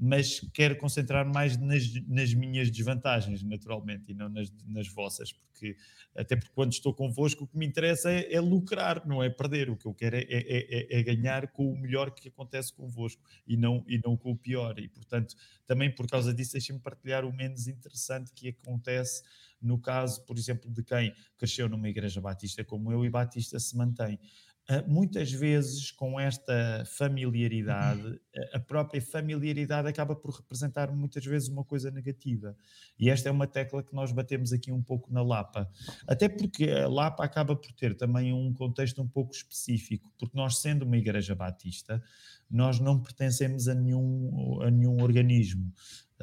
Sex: male